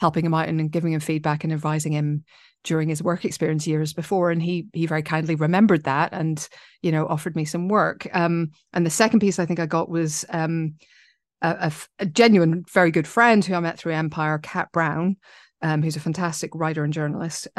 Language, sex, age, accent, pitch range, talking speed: English, female, 40-59, British, 160-180 Hz, 215 wpm